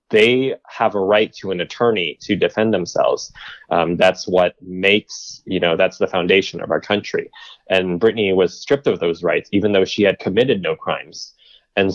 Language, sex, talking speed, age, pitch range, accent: English, male, 185 wpm, 30-49, 90-105 Hz, American